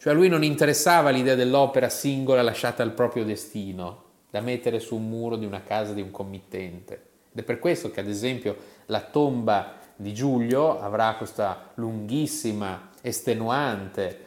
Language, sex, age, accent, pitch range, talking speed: Italian, male, 30-49, native, 110-150 Hz, 160 wpm